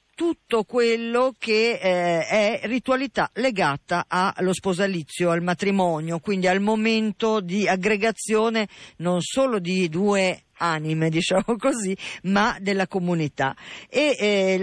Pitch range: 170-220 Hz